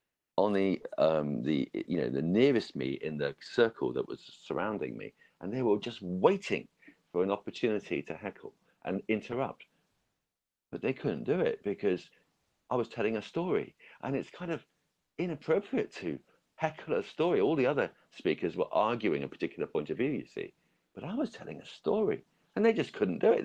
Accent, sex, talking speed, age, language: British, male, 185 wpm, 50-69, English